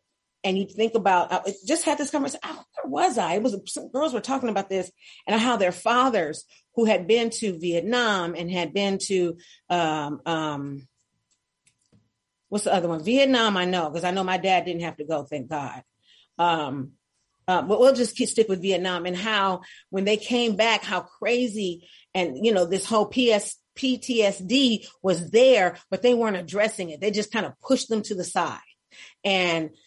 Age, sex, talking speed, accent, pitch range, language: 40-59, female, 180 wpm, American, 175-240 Hz, English